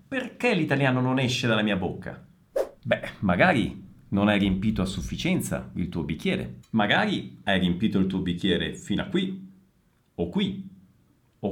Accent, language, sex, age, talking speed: native, Italian, male, 40-59, 150 wpm